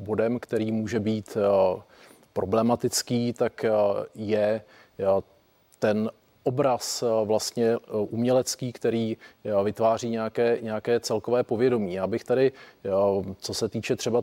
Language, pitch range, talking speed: Czech, 105-120 Hz, 95 wpm